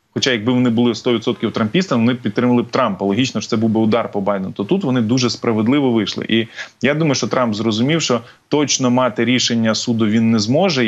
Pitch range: 115-140 Hz